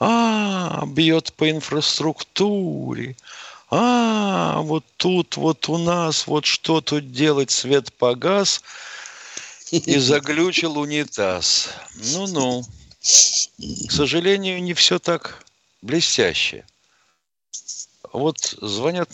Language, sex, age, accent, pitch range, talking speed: Russian, male, 50-69, native, 130-185 Hz, 90 wpm